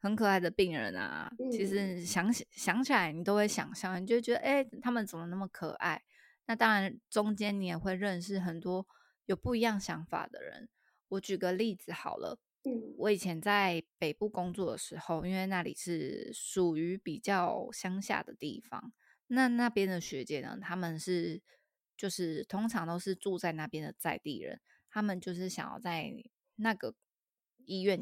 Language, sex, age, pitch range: Chinese, female, 20-39, 175-220 Hz